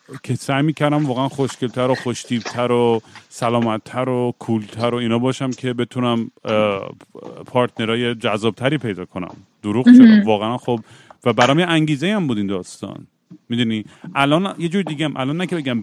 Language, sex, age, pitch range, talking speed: Persian, male, 40-59, 105-125 Hz, 155 wpm